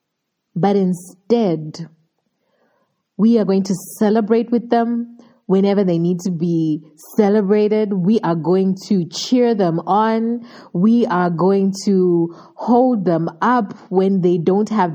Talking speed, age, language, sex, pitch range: 135 wpm, 30-49, English, female, 175-230 Hz